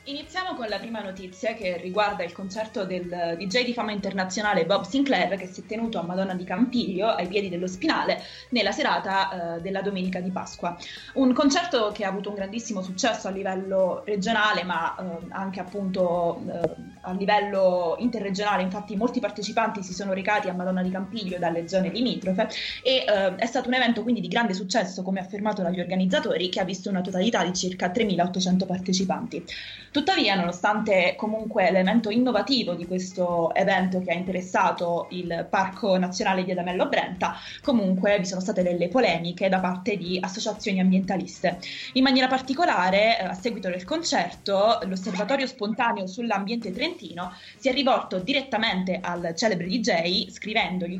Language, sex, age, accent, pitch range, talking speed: Italian, female, 20-39, native, 185-225 Hz, 165 wpm